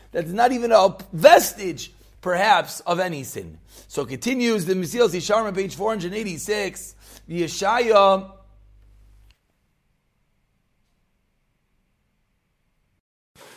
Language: English